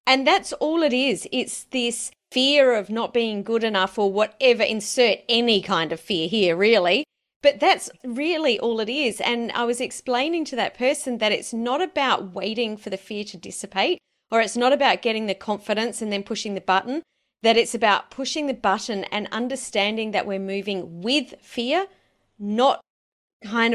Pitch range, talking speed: 200-255 Hz, 180 wpm